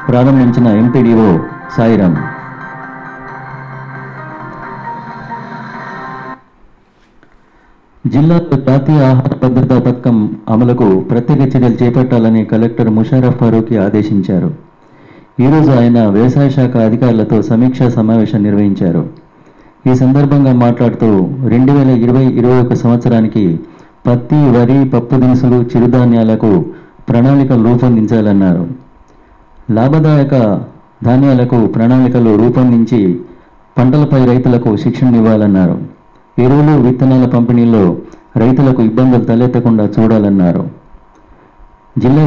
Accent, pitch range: native, 110-130 Hz